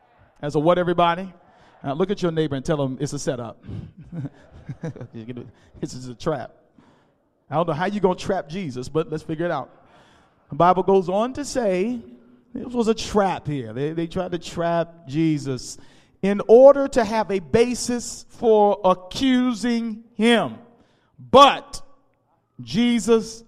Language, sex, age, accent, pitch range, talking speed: English, male, 40-59, American, 150-220 Hz, 155 wpm